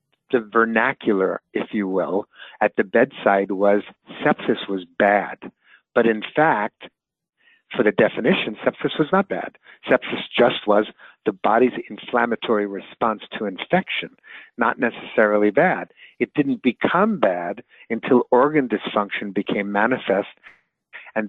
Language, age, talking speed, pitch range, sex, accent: English, 50-69, 125 wpm, 105-140 Hz, male, American